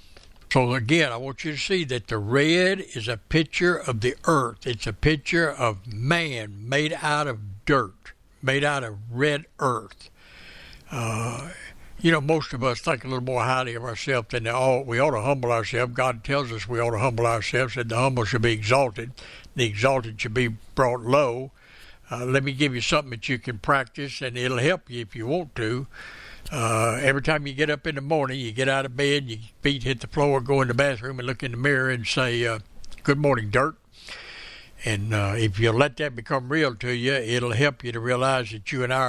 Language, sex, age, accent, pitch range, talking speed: English, male, 60-79, American, 115-140 Hz, 220 wpm